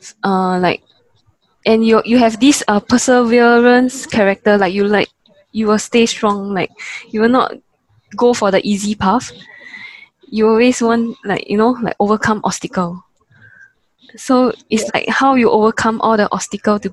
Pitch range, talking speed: 195-245 Hz, 160 wpm